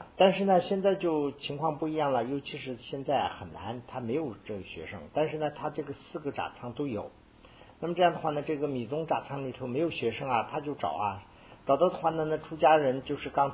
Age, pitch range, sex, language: 50-69, 105-150 Hz, male, Chinese